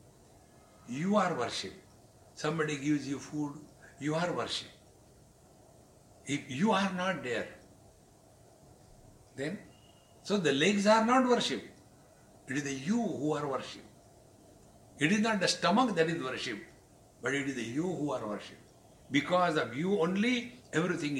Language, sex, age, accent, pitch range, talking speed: English, male, 60-79, Indian, 120-170 Hz, 140 wpm